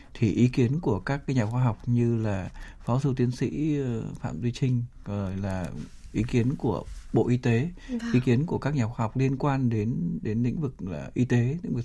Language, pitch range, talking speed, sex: Vietnamese, 110-140 Hz, 225 wpm, male